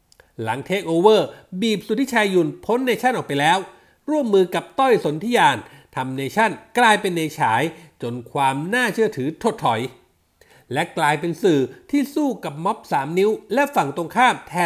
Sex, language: male, Thai